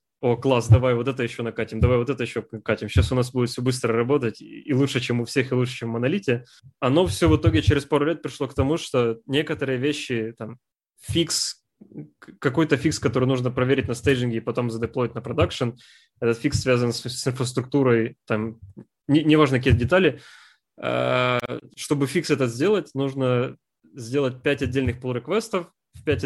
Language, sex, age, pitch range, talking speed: Ukrainian, male, 20-39, 120-140 Hz, 180 wpm